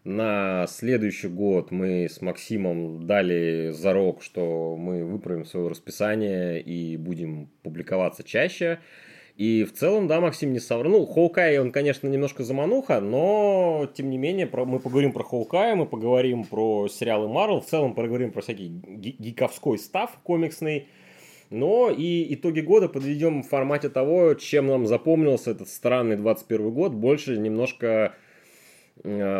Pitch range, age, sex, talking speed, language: 105-150 Hz, 30-49, male, 140 wpm, Russian